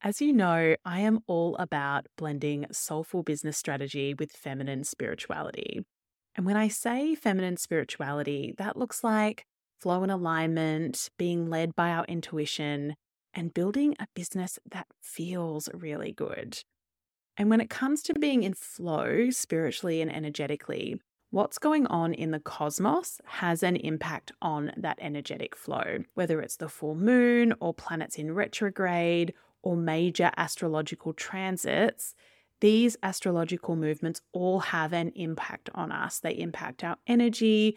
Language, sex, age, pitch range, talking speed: English, female, 20-39, 160-200 Hz, 140 wpm